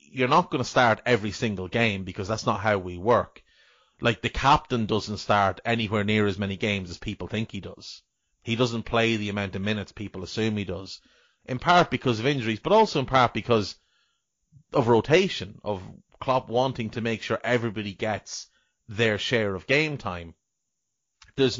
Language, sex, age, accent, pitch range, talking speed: English, male, 30-49, Irish, 105-130 Hz, 185 wpm